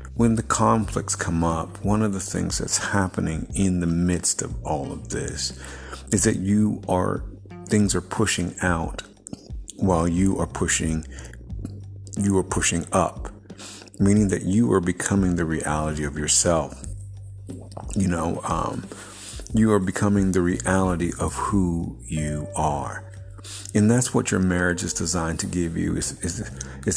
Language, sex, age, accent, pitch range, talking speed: English, male, 50-69, American, 85-100 Hz, 150 wpm